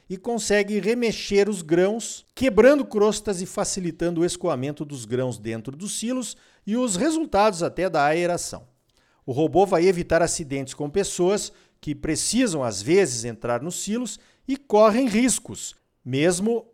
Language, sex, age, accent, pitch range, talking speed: Portuguese, male, 50-69, Brazilian, 145-205 Hz, 145 wpm